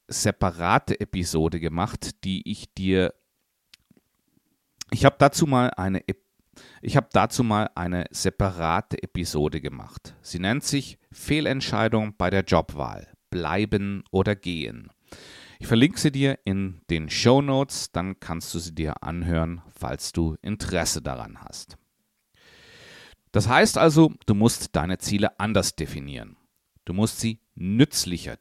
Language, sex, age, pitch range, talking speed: German, male, 40-59, 85-120 Hz, 125 wpm